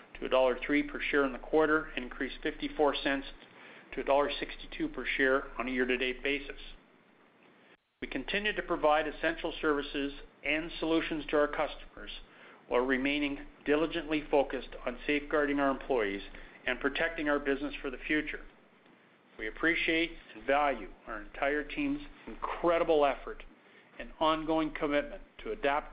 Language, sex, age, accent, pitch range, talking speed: English, male, 50-69, American, 130-155 Hz, 135 wpm